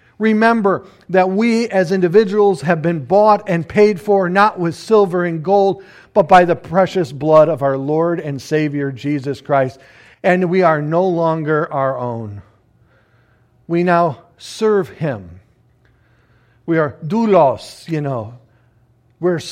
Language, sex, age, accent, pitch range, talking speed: English, male, 50-69, American, 130-190 Hz, 140 wpm